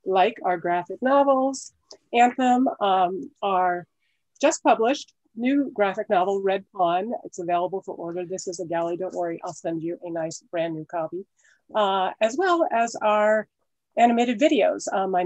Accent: American